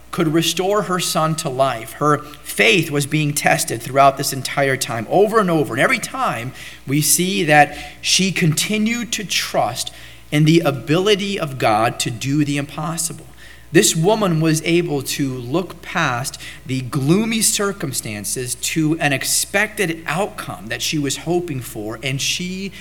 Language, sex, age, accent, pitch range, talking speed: English, male, 40-59, American, 140-190 Hz, 155 wpm